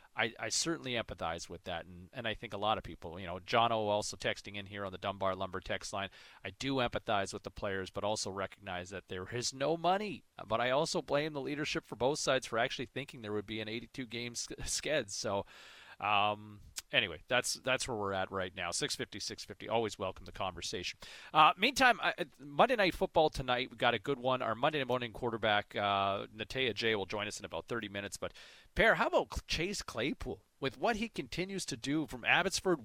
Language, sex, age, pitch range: English, male, 40-59, 105-160 Hz